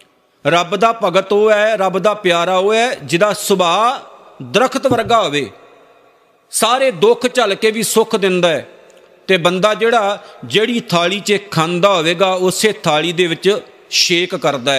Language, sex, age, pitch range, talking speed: Punjabi, male, 50-69, 180-230 Hz, 150 wpm